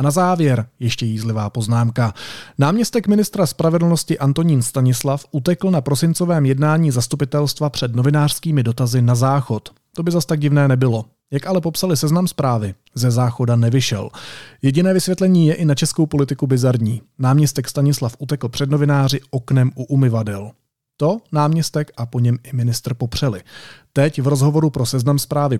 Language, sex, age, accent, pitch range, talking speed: Czech, male, 30-49, native, 120-150 Hz, 150 wpm